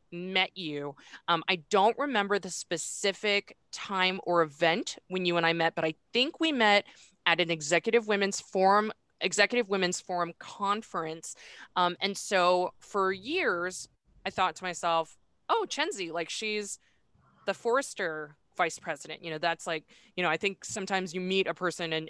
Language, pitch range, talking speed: English, 165-195 Hz, 165 wpm